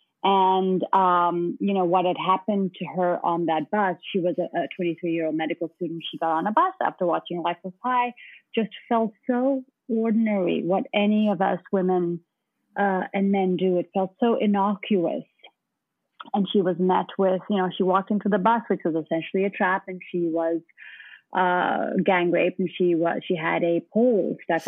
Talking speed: 190 wpm